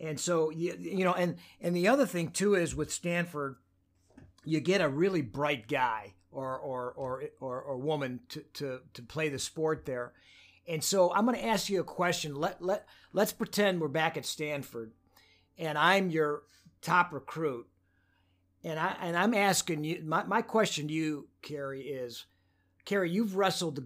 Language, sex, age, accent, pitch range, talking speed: English, male, 50-69, American, 125-175 Hz, 180 wpm